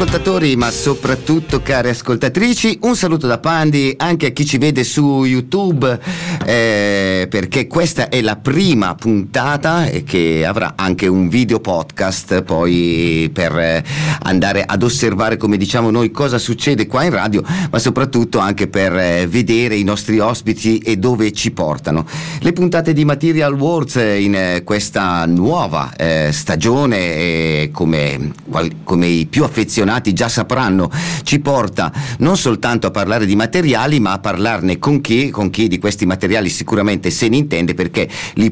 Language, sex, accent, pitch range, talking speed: Italian, male, native, 95-140 Hz, 160 wpm